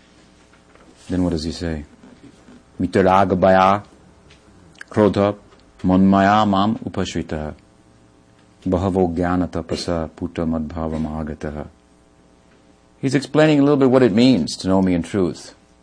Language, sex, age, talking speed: English, male, 50-69, 70 wpm